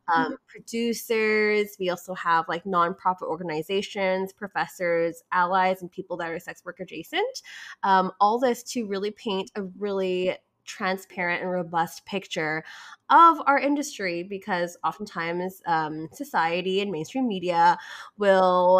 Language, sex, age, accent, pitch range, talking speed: English, female, 20-39, American, 175-235 Hz, 125 wpm